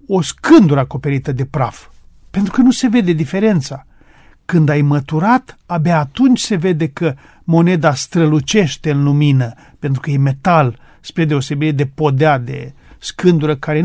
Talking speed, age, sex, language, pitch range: 145 wpm, 40-59, male, Romanian, 140-170 Hz